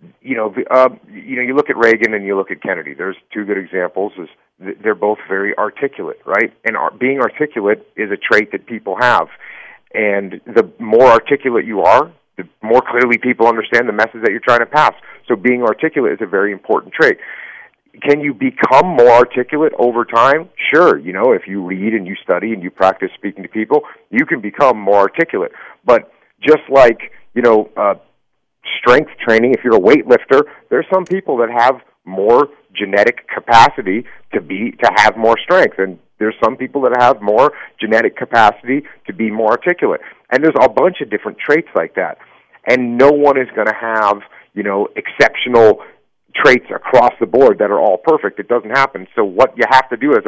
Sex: male